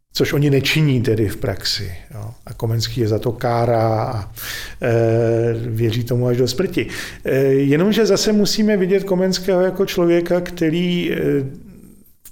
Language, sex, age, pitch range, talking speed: Czech, male, 50-69, 130-155 Hz, 135 wpm